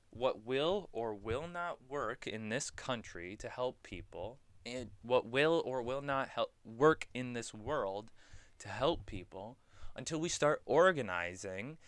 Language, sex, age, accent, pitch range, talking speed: English, male, 20-39, American, 105-125 Hz, 150 wpm